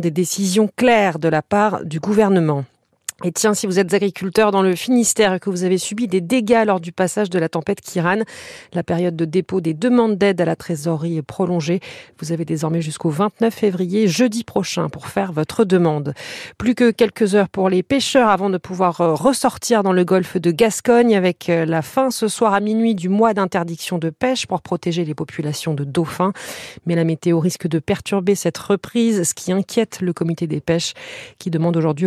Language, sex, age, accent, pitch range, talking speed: French, female, 40-59, French, 170-210 Hz, 200 wpm